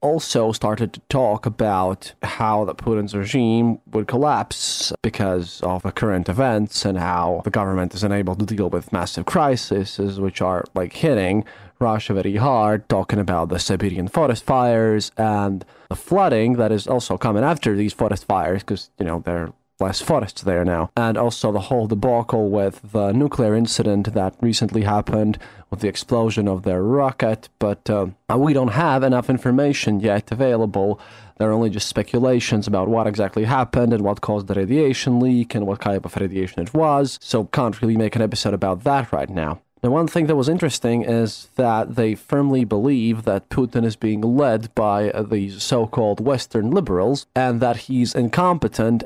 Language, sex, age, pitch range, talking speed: English, male, 20-39, 100-125 Hz, 175 wpm